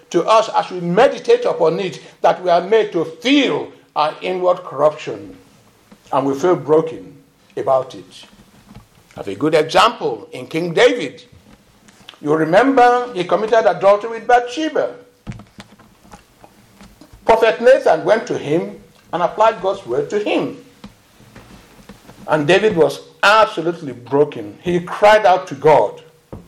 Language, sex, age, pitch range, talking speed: English, male, 50-69, 165-260 Hz, 130 wpm